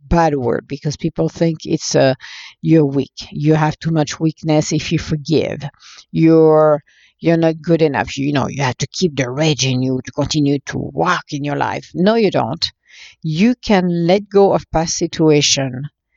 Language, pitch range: English, 150-180 Hz